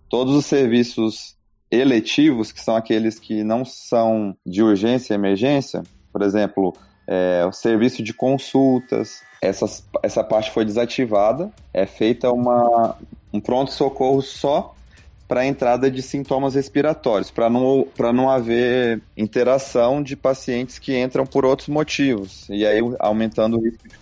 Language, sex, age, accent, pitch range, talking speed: Portuguese, male, 20-39, Brazilian, 110-130 Hz, 140 wpm